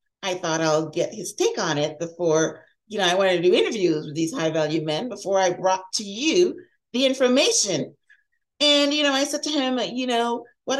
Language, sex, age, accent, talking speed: English, female, 40-59, American, 210 wpm